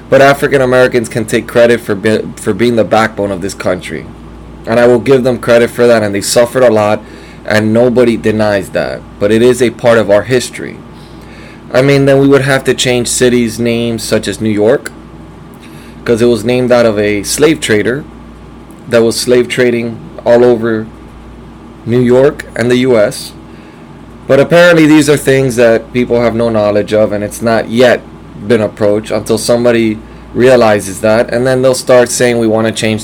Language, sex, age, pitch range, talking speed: English, male, 20-39, 105-125 Hz, 190 wpm